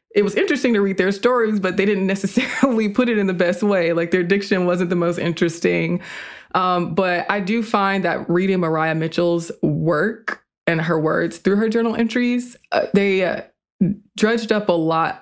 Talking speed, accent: 190 wpm, American